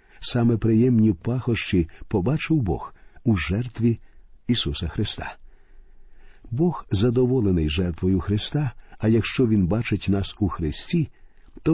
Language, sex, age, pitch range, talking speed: Ukrainian, male, 50-69, 95-125 Hz, 105 wpm